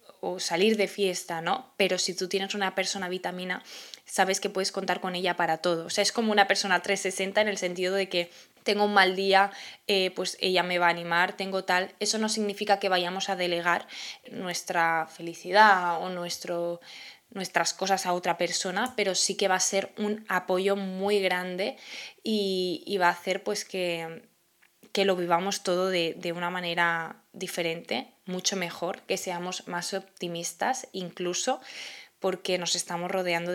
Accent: Spanish